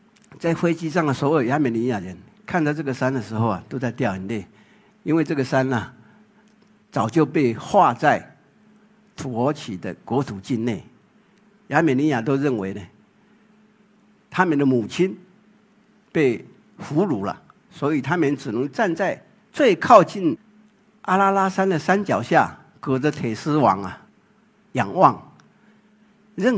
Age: 50-69